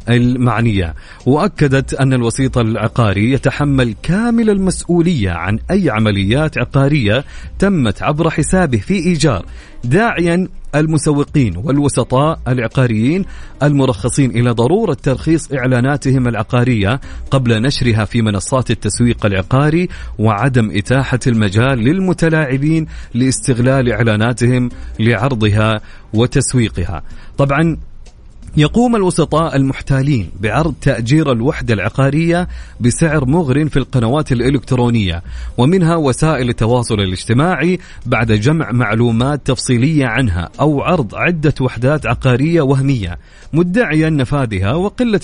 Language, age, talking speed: Arabic, 40-59, 95 wpm